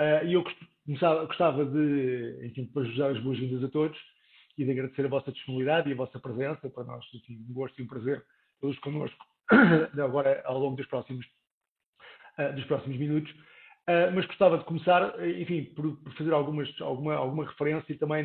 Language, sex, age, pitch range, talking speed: Portuguese, male, 50-69, 140-165 Hz, 170 wpm